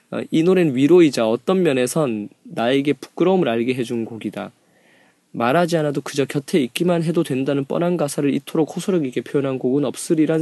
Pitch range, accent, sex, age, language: 115-170 Hz, native, male, 20-39, Korean